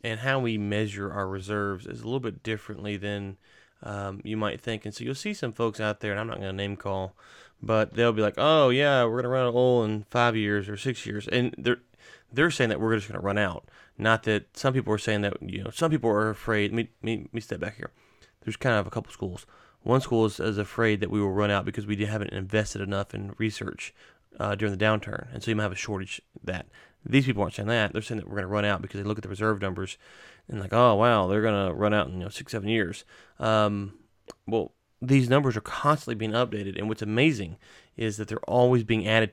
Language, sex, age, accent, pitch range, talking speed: English, male, 30-49, American, 100-115 Hz, 250 wpm